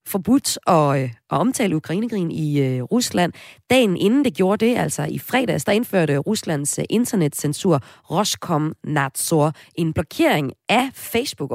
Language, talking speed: Danish, 135 wpm